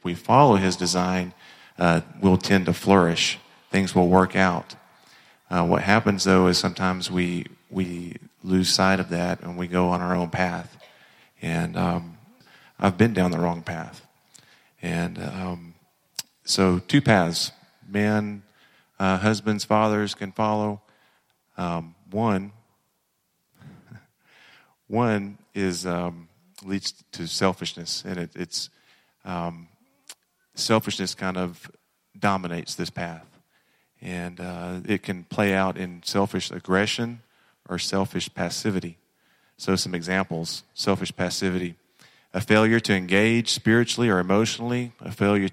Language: English